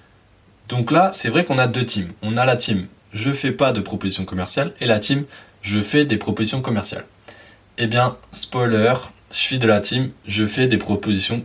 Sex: male